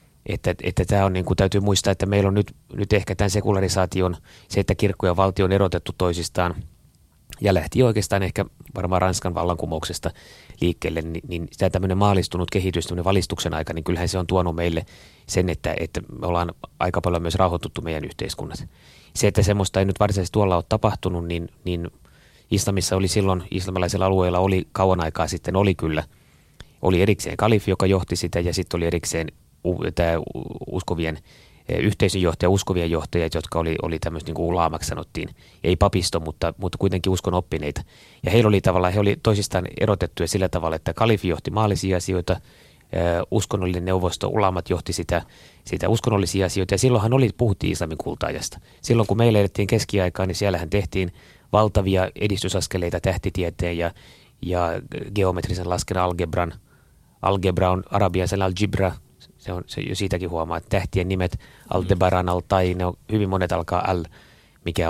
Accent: native